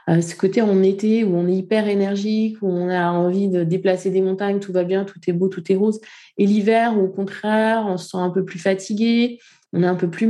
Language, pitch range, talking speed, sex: French, 180-235 Hz, 250 wpm, female